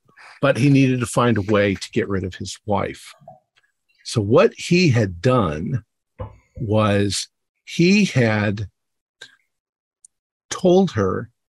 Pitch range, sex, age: 100-125 Hz, male, 50-69